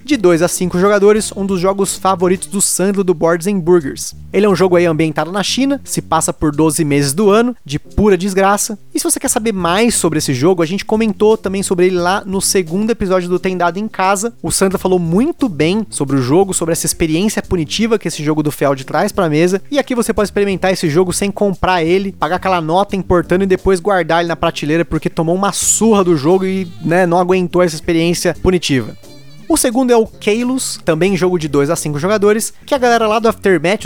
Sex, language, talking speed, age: male, Portuguese, 225 wpm, 20-39